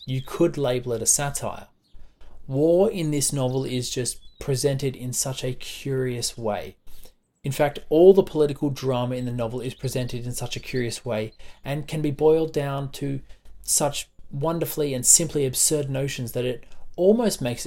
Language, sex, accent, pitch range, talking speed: English, male, Australian, 120-150 Hz, 170 wpm